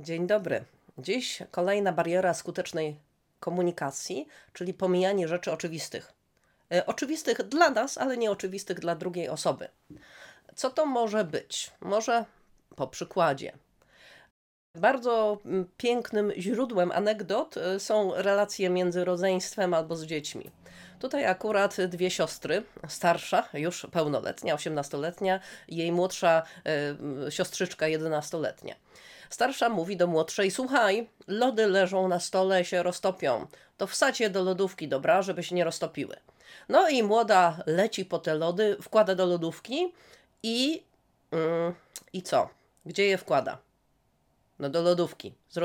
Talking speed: 120 wpm